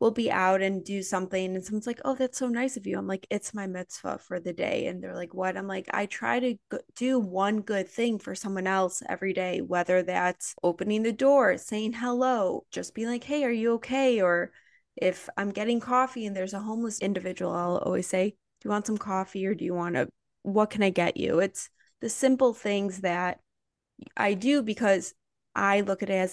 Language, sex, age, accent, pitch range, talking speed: English, female, 20-39, American, 185-230 Hz, 220 wpm